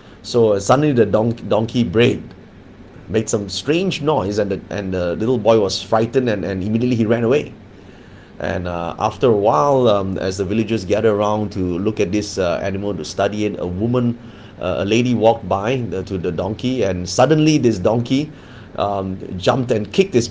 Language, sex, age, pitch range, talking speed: English, male, 30-49, 95-120 Hz, 185 wpm